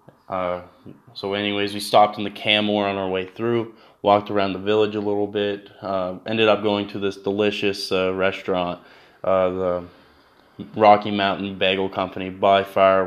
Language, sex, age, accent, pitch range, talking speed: English, male, 20-39, American, 95-105 Hz, 165 wpm